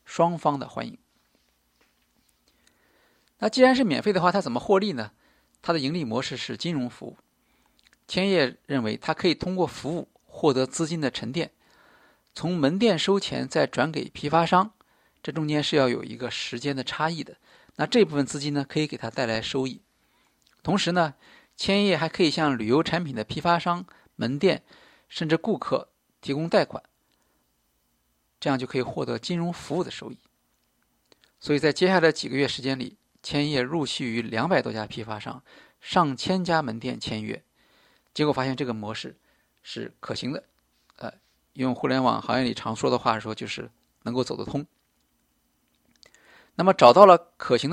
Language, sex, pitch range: Chinese, male, 125-170 Hz